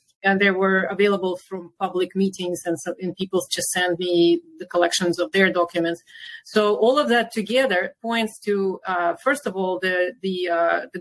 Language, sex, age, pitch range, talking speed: English, female, 30-49, 180-210 Hz, 185 wpm